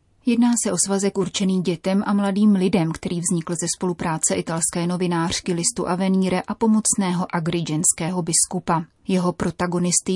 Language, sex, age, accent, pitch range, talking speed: Czech, female, 30-49, native, 175-200 Hz, 135 wpm